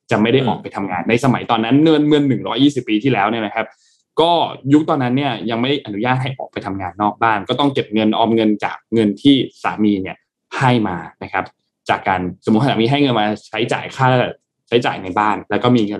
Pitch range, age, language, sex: 105-135 Hz, 20-39, Thai, male